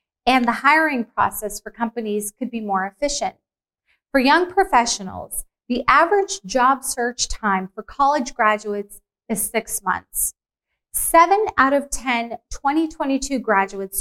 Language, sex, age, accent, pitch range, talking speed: English, female, 30-49, American, 215-275 Hz, 130 wpm